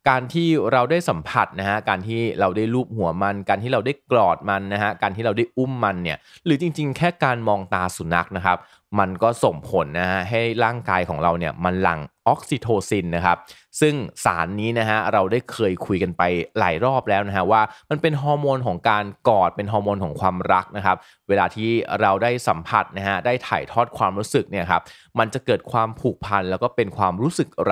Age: 20-39